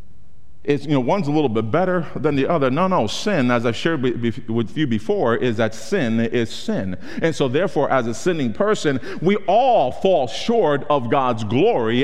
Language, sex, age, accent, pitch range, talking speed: English, male, 40-59, American, 120-175 Hz, 195 wpm